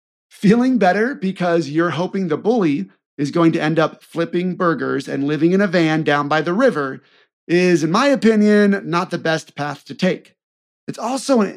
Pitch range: 160-215 Hz